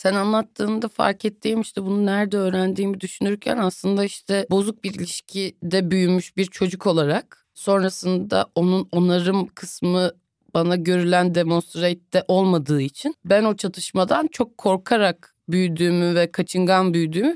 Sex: female